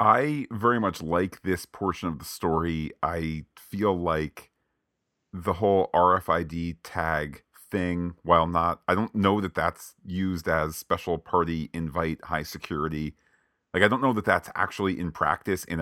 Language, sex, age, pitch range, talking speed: English, male, 40-59, 75-95 Hz, 155 wpm